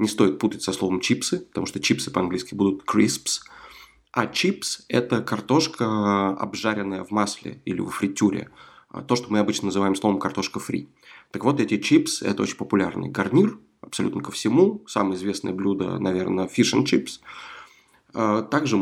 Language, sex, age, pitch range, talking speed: Russian, male, 20-39, 95-125 Hz, 155 wpm